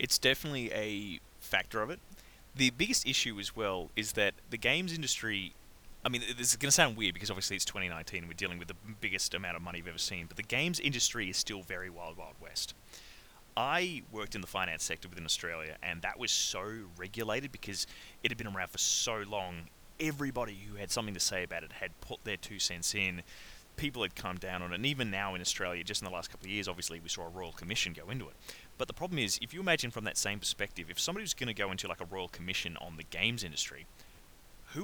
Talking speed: 240 wpm